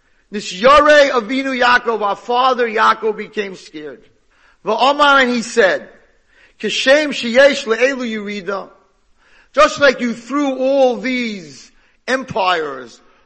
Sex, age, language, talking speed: male, 50-69, English, 110 wpm